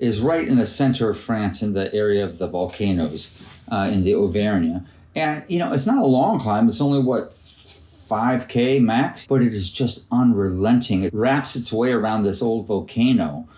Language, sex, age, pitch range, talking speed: English, male, 40-59, 90-120 Hz, 190 wpm